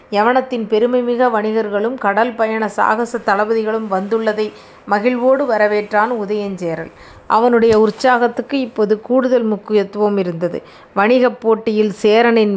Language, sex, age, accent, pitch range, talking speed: Tamil, female, 30-49, native, 210-235 Hz, 100 wpm